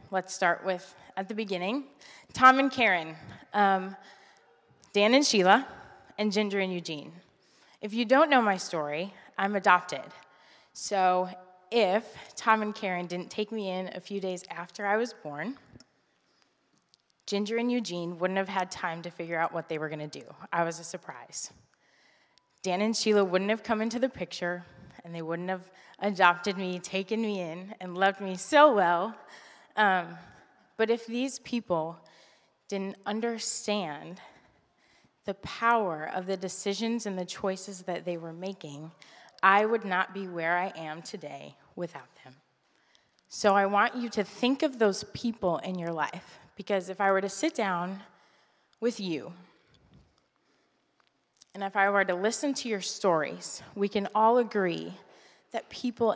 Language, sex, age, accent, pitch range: Japanese, female, 20-39, American, 175-215 Hz